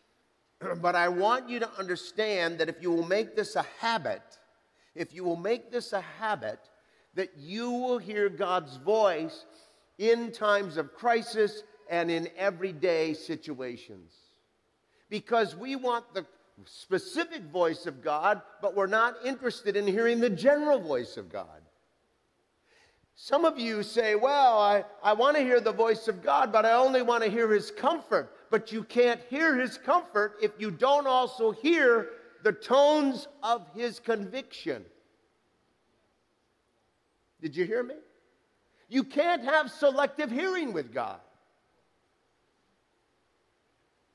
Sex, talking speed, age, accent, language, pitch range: male, 140 wpm, 50-69, American, English, 195-280 Hz